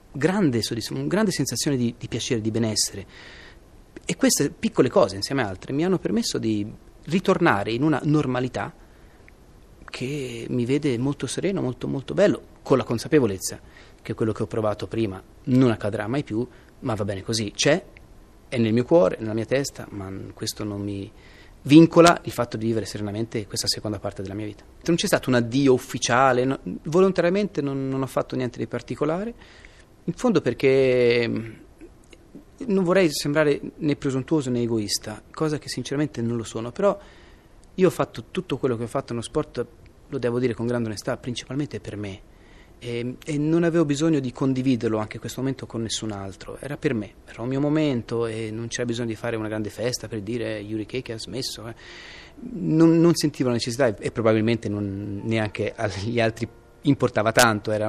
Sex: male